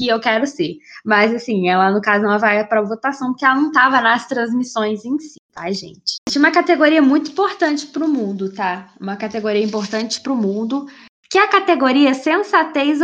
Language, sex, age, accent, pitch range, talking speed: Portuguese, female, 10-29, Brazilian, 215-275 Hz, 200 wpm